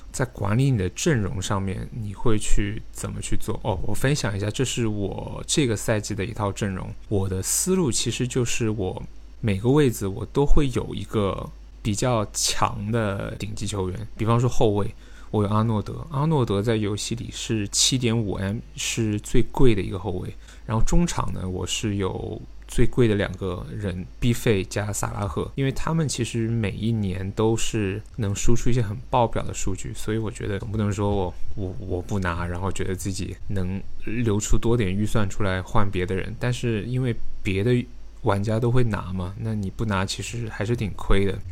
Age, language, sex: 20-39, Chinese, male